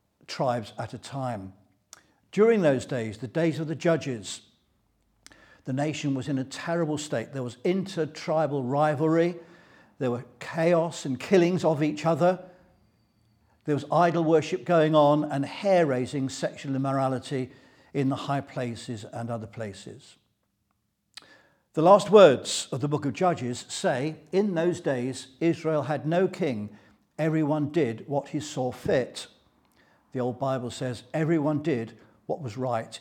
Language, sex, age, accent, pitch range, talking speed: English, male, 60-79, British, 125-170 Hz, 145 wpm